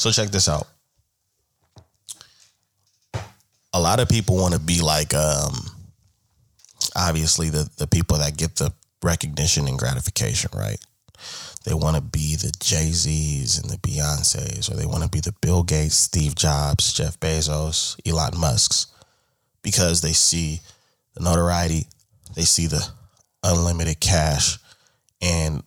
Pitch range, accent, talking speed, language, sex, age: 80-105 Hz, American, 135 wpm, English, male, 20-39